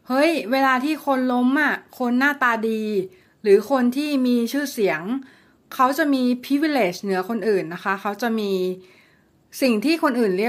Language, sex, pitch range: Thai, female, 200-260 Hz